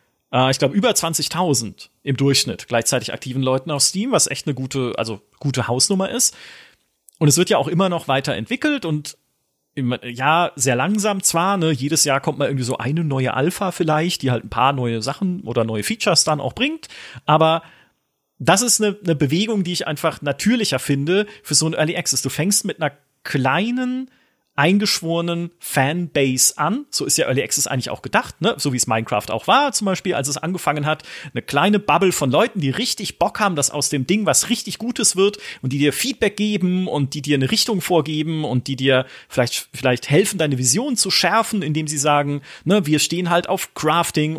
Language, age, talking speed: German, 30-49, 200 wpm